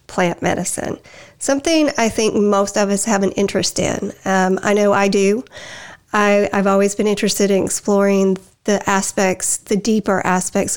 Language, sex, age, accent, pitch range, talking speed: English, female, 40-59, American, 195-230 Hz, 155 wpm